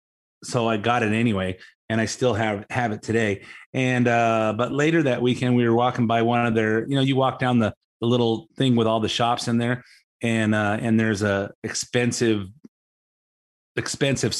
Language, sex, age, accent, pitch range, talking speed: English, male, 30-49, American, 115-140 Hz, 195 wpm